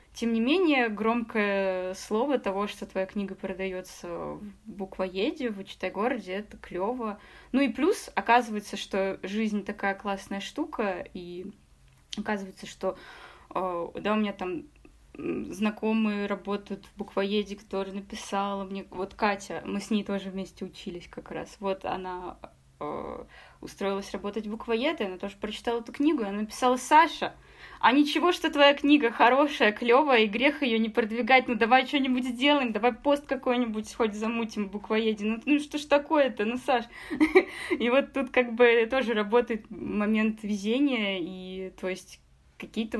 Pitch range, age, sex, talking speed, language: 195-250 Hz, 20-39, female, 150 wpm, Russian